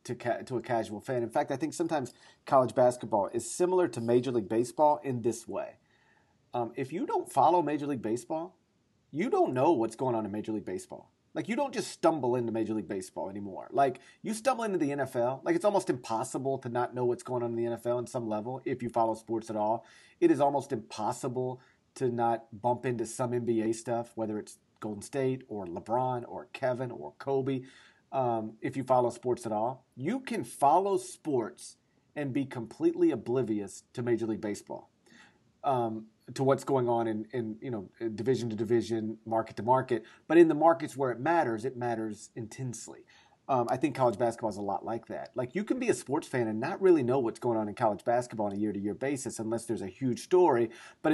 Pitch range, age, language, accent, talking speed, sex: 115-135 Hz, 40-59, English, American, 210 wpm, male